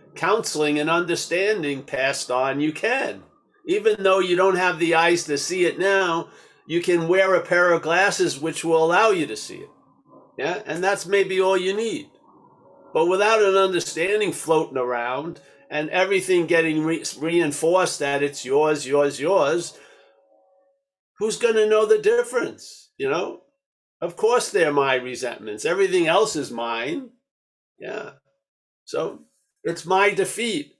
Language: English